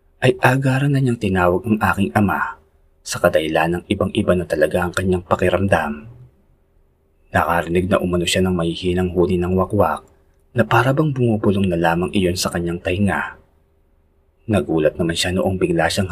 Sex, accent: male, native